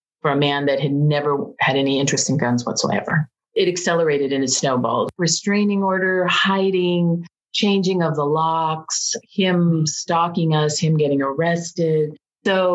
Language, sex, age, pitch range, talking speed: English, female, 40-59, 150-185 Hz, 145 wpm